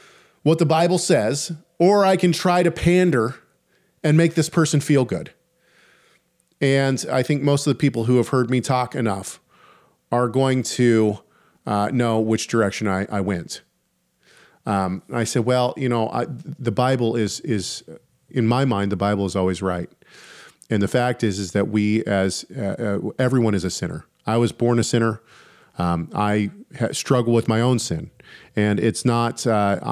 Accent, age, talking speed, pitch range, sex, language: American, 40-59, 180 wpm, 105-130 Hz, male, English